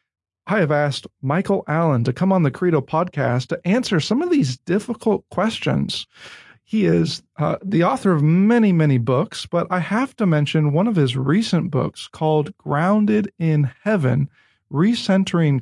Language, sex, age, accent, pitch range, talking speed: English, male, 40-59, American, 140-185 Hz, 160 wpm